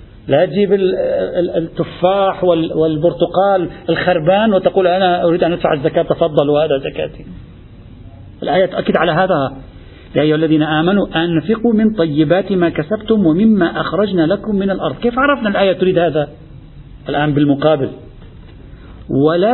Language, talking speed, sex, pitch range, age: Arabic, 125 wpm, male, 160-235 Hz, 50-69